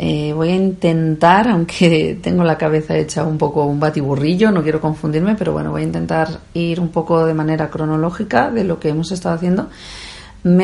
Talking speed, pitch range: 190 wpm, 150-175 Hz